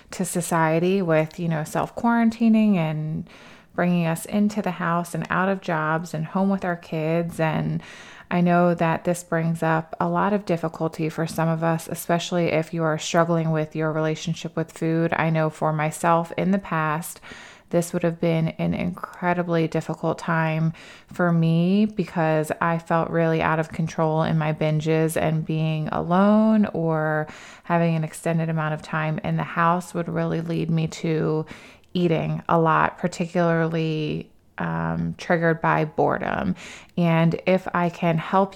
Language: English